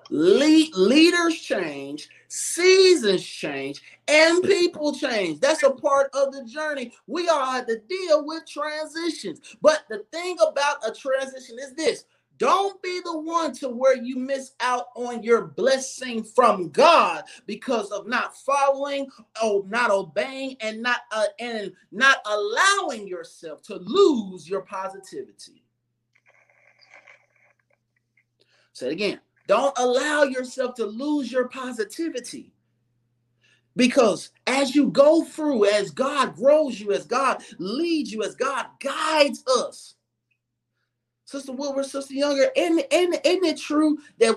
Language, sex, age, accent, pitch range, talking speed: English, male, 30-49, American, 235-310 Hz, 130 wpm